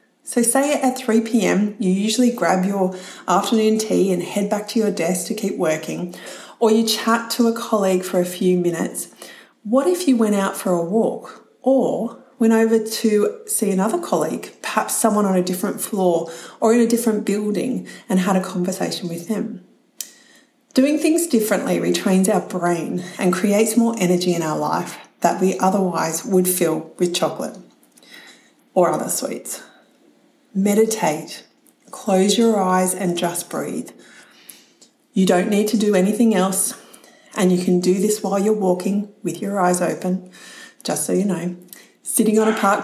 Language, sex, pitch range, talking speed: English, female, 185-230 Hz, 165 wpm